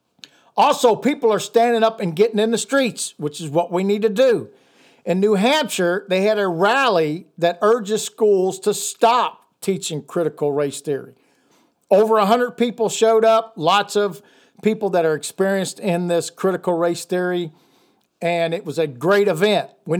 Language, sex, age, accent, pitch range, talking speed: English, male, 50-69, American, 170-225 Hz, 170 wpm